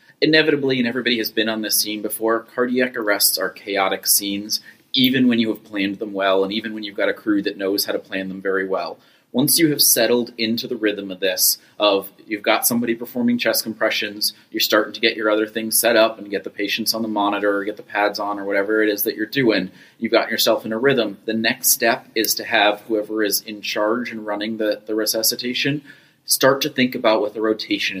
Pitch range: 105-115 Hz